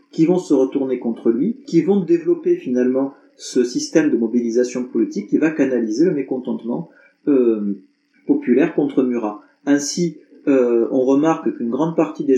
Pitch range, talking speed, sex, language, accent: 120-170 Hz, 155 wpm, male, English, French